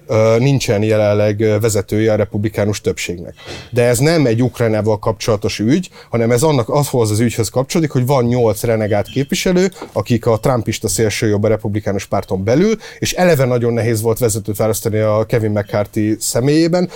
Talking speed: 160 wpm